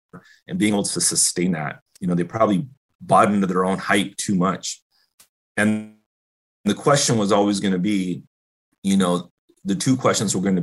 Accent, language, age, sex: American, English, 30-49, male